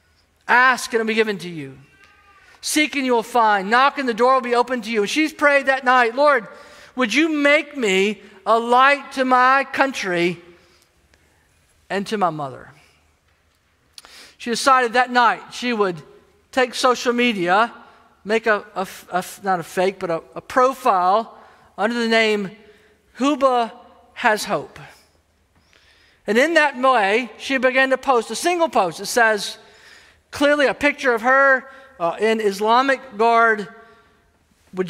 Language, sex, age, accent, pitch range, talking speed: English, male, 50-69, American, 195-255 Hz, 155 wpm